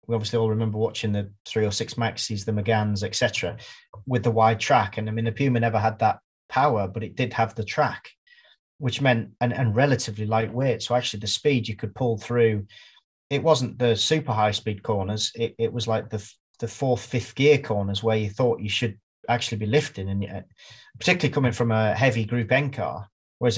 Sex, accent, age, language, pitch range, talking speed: male, British, 30-49, English, 110-125 Hz, 210 wpm